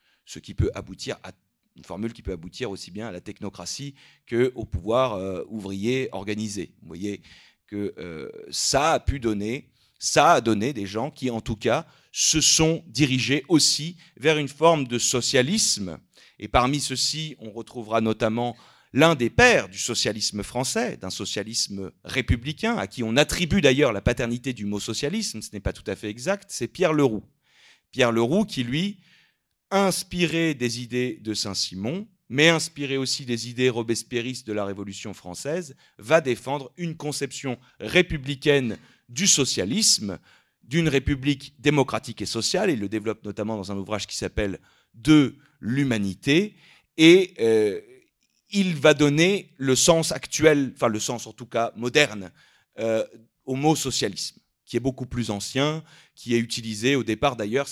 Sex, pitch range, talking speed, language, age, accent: male, 110-155 Hz, 165 wpm, French, 40-59, French